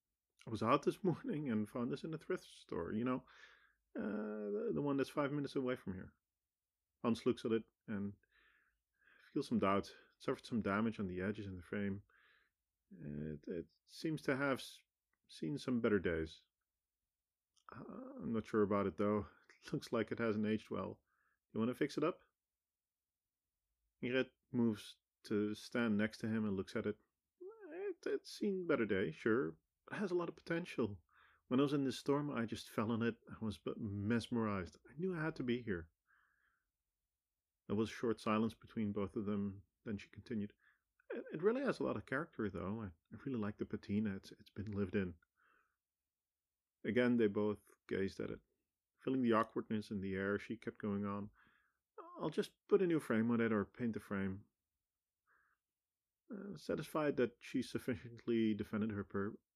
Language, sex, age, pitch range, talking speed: English, male, 40-59, 100-120 Hz, 180 wpm